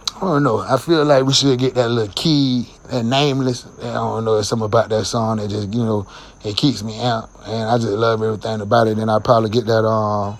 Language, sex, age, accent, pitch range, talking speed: English, male, 30-49, American, 110-125 Hz, 250 wpm